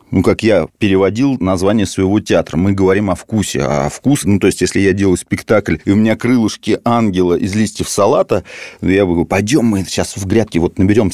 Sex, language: male, Russian